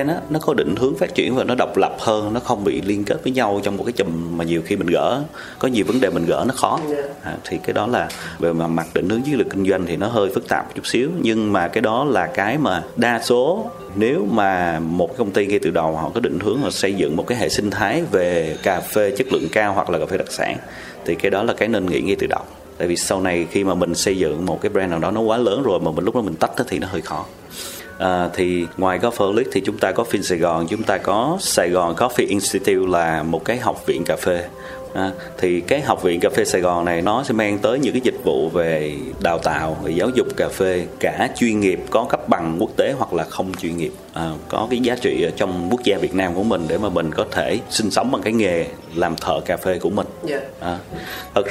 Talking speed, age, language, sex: 275 wpm, 30-49, Vietnamese, male